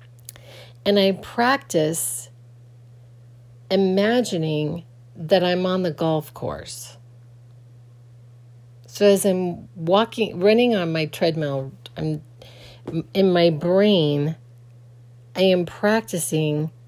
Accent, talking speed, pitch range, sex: American, 90 wpm, 120-175 Hz, female